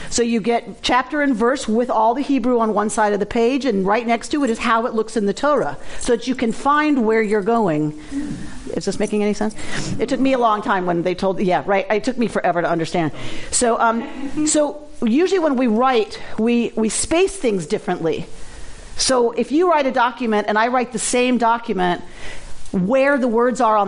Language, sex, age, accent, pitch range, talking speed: English, female, 40-59, American, 205-250 Hz, 220 wpm